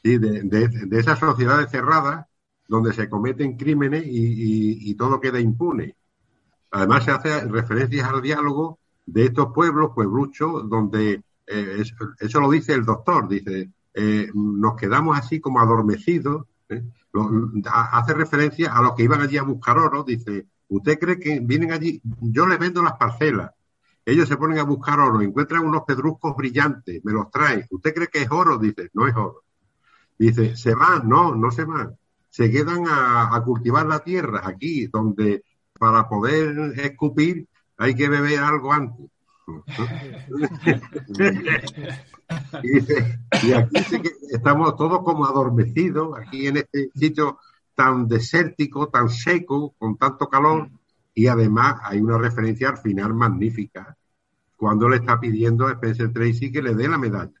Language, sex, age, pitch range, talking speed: Spanish, male, 60-79, 115-150 Hz, 155 wpm